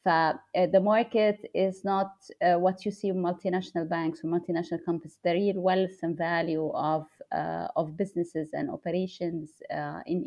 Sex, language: female, German